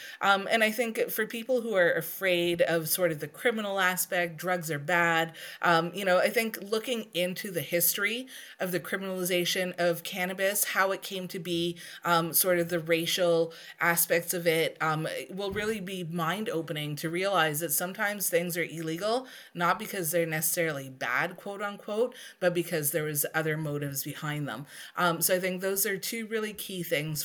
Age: 30-49